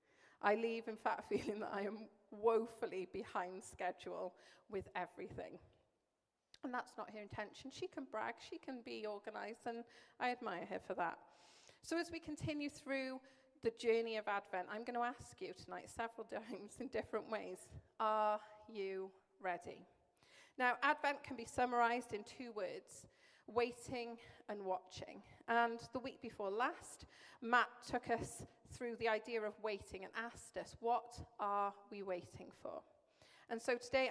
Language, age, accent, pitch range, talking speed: English, 40-59, British, 215-270 Hz, 155 wpm